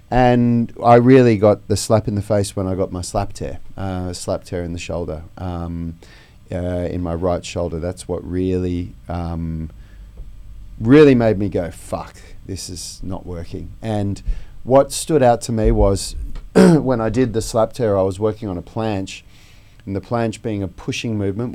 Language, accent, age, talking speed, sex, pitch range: English, Australian, 30-49, 185 wpm, male, 95-110 Hz